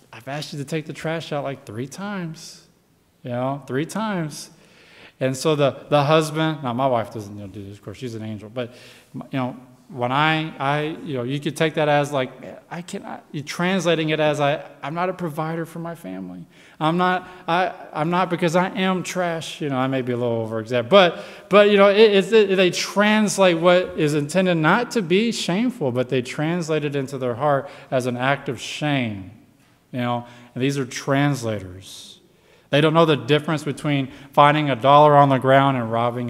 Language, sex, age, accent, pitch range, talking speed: English, male, 20-39, American, 130-180 Hz, 210 wpm